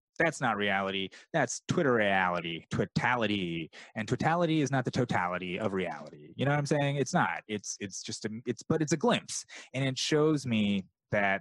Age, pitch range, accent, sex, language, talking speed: 30-49, 95-125 Hz, American, male, English, 190 wpm